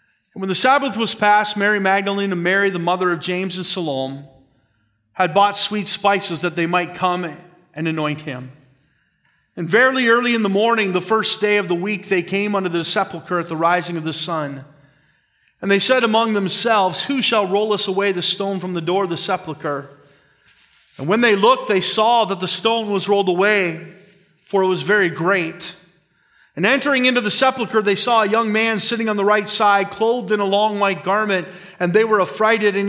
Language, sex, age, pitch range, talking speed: English, male, 40-59, 185-250 Hz, 205 wpm